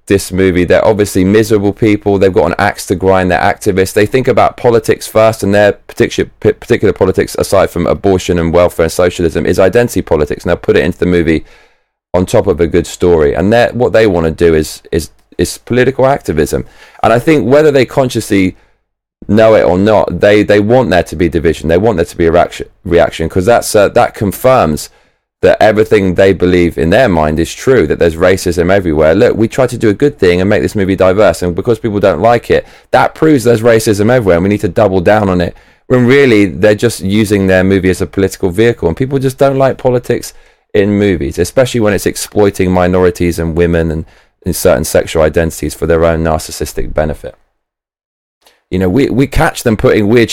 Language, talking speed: English, 210 wpm